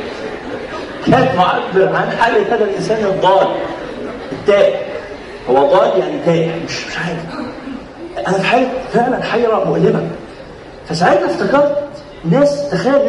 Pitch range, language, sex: 180-260 Hz, Arabic, male